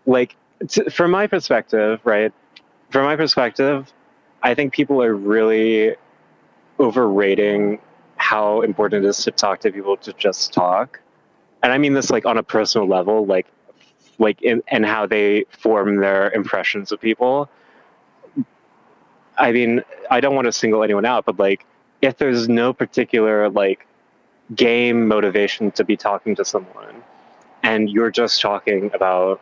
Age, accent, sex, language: 20-39, American, male, English